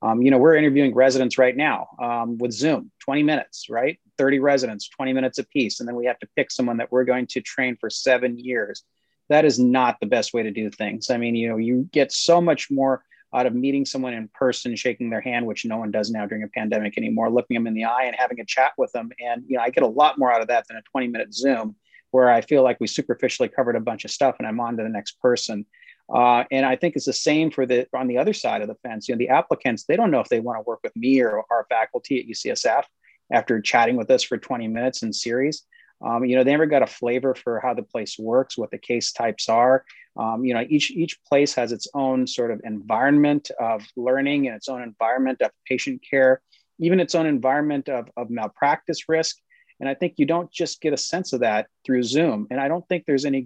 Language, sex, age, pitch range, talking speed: English, male, 30-49, 120-145 Hz, 255 wpm